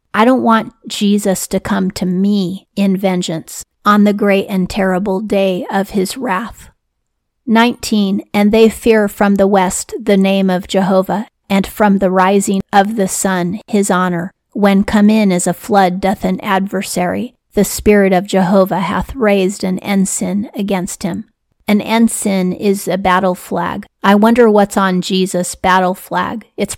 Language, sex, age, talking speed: English, female, 40-59, 160 wpm